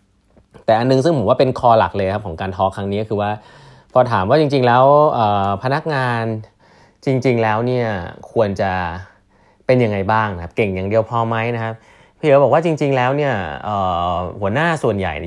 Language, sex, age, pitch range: Thai, male, 20-39, 95-125 Hz